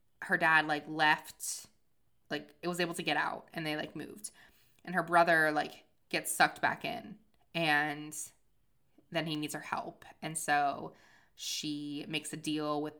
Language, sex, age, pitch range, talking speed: English, female, 20-39, 145-165 Hz, 165 wpm